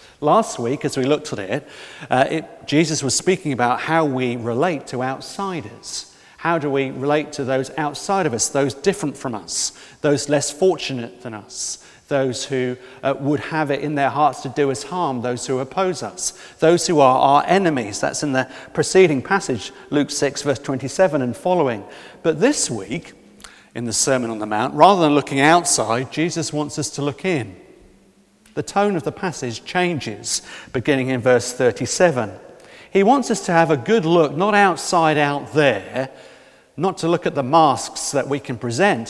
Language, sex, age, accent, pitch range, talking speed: English, male, 40-59, British, 135-175 Hz, 185 wpm